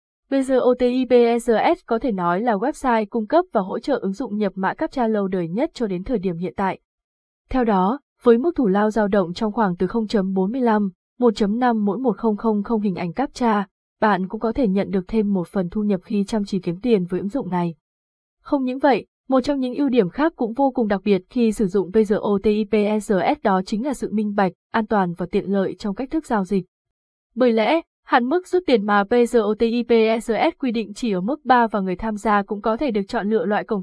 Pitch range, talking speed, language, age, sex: 200-245 Hz, 215 wpm, Vietnamese, 20-39, female